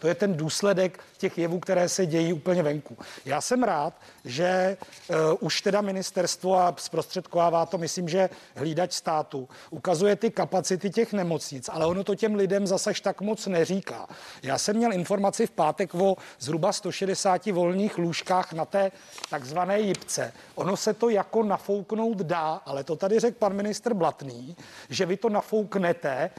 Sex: male